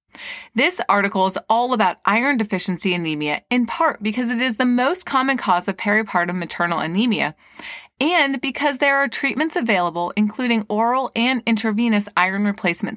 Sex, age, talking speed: female, 30-49, 155 wpm